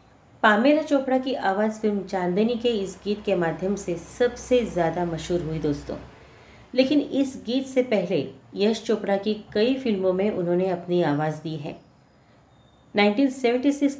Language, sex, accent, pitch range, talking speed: Hindi, female, native, 175-230 Hz, 145 wpm